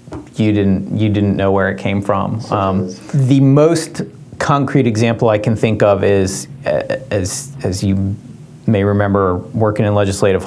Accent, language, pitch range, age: American, English, 100-115 Hz, 30-49